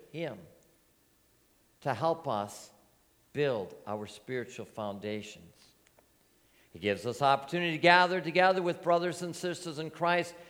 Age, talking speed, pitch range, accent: 50-69, 120 wpm, 150-215 Hz, American